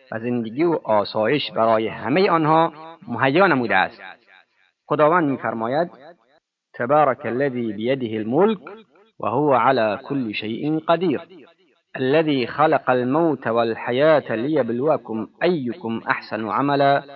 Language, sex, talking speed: Persian, male, 100 wpm